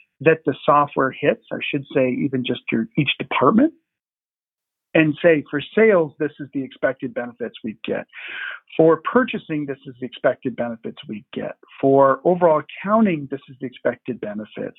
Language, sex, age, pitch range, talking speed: English, male, 50-69, 145-220 Hz, 160 wpm